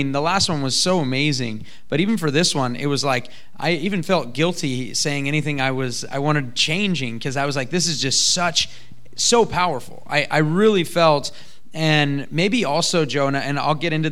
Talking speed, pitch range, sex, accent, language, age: 210 wpm, 135-165 Hz, male, American, English, 20-39